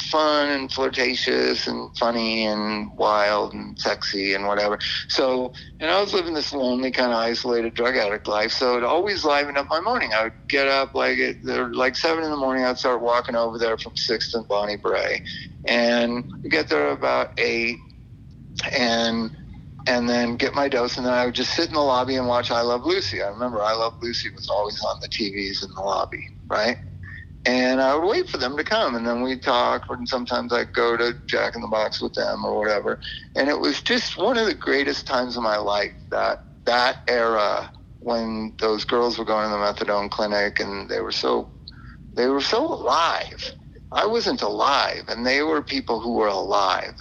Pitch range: 110-130 Hz